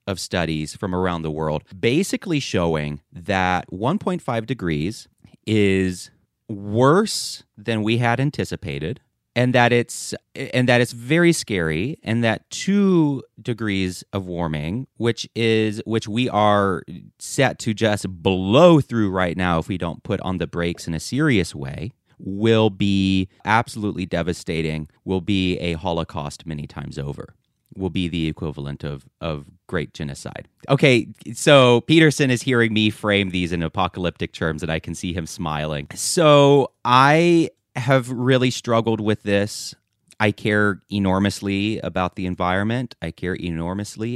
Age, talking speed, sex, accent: 30-49, 145 wpm, male, American